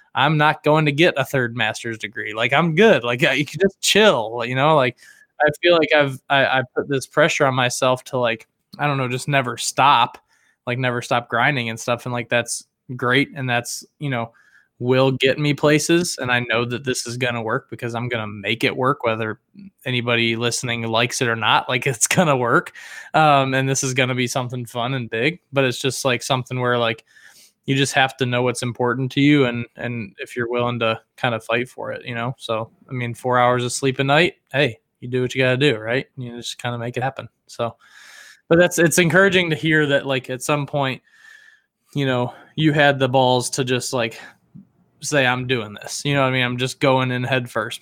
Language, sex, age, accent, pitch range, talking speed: English, male, 20-39, American, 120-140 Hz, 230 wpm